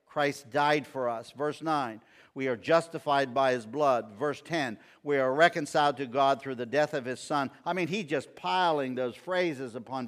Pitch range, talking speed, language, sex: 125-165 Hz, 195 wpm, English, male